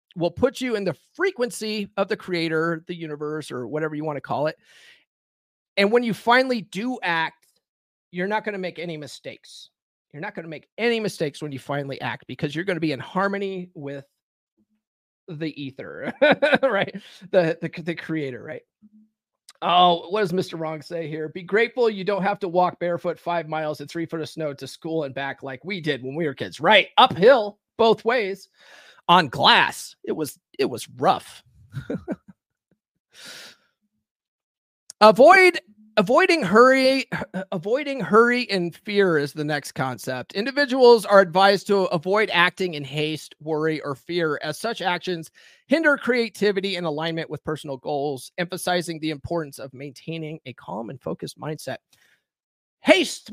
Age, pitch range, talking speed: 30-49, 155-210 Hz, 165 wpm